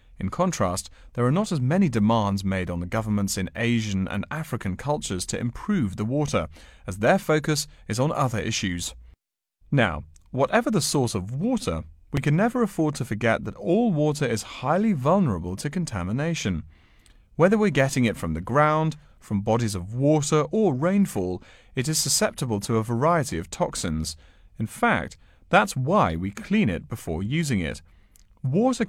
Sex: male